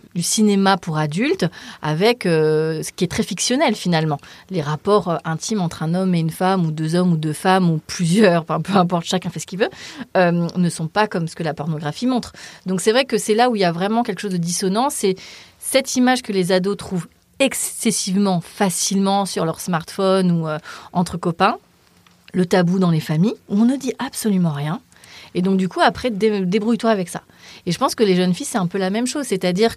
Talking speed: 225 wpm